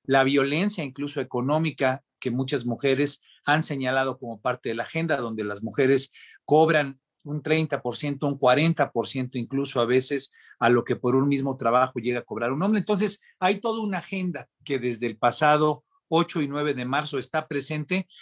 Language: Spanish